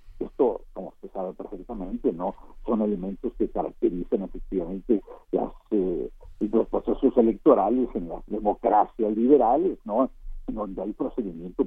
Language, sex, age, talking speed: Spanish, male, 60-79, 125 wpm